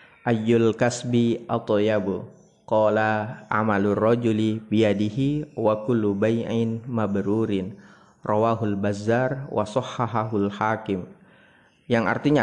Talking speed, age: 75 wpm, 30-49